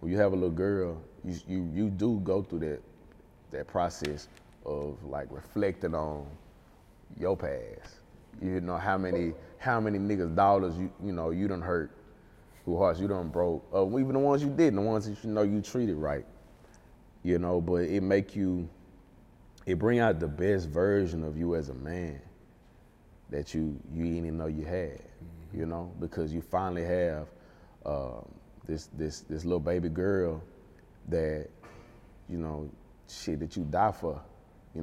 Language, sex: English, male